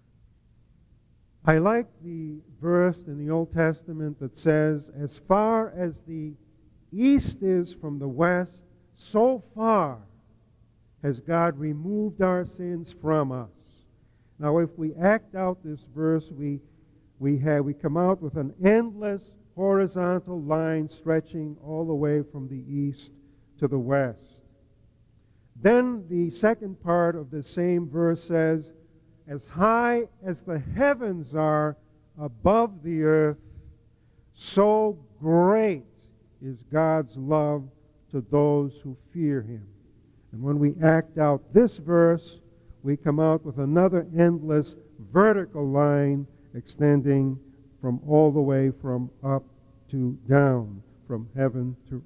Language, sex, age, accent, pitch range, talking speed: English, male, 50-69, American, 135-175 Hz, 130 wpm